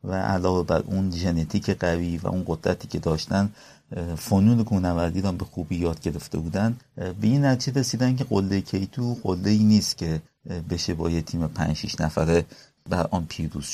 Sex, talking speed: male, 165 wpm